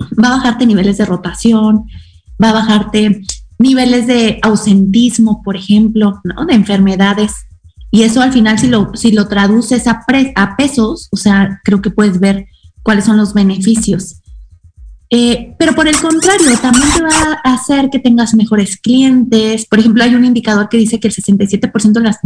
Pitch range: 205-265 Hz